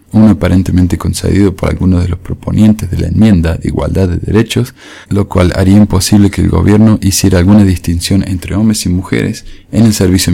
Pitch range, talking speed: 90-110 Hz, 185 wpm